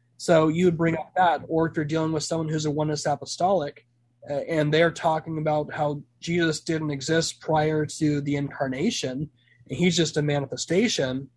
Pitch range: 135-165 Hz